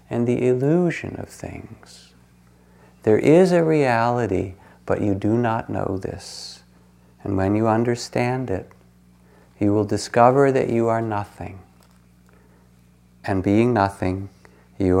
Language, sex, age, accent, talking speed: English, male, 50-69, American, 125 wpm